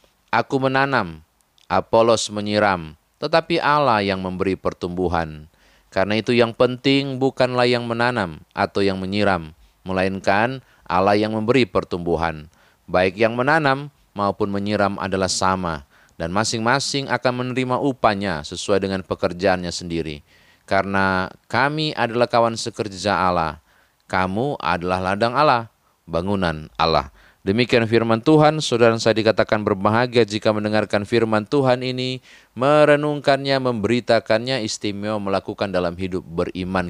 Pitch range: 95-120 Hz